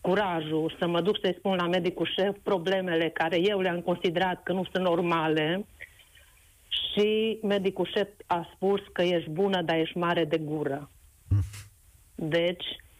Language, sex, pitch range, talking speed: Romanian, female, 170-205 Hz, 150 wpm